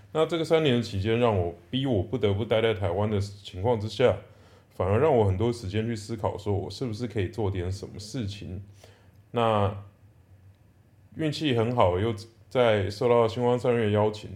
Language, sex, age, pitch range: Chinese, male, 20-39, 100-115 Hz